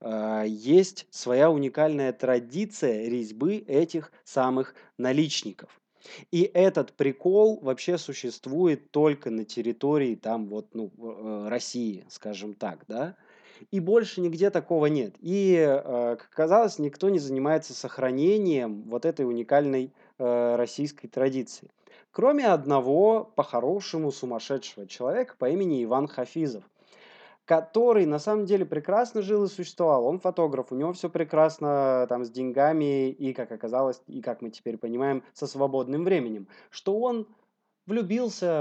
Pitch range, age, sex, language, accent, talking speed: 125-185 Hz, 20-39, male, Russian, native, 120 wpm